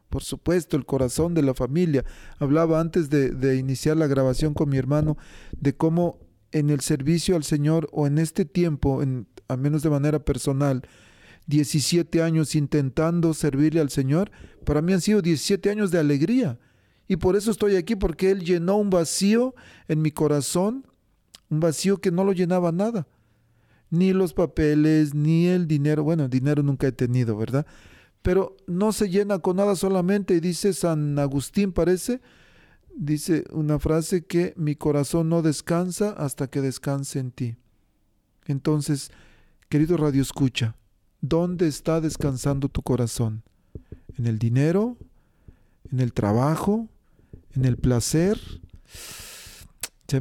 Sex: male